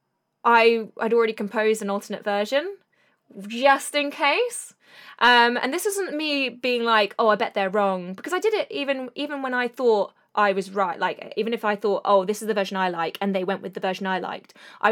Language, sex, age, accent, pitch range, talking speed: English, female, 20-39, British, 195-245 Hz, 220 wpm